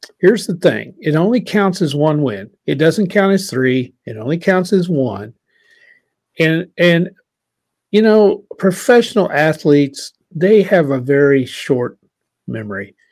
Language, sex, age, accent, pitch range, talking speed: English, male, 50-69, American, 135-190 Hz, 140 wpm